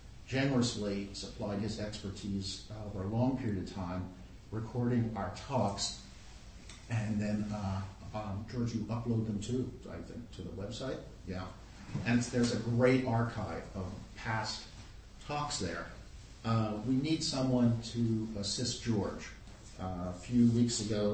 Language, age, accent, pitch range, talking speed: English, 50-69, American, 100-120 Hz, 140 wpm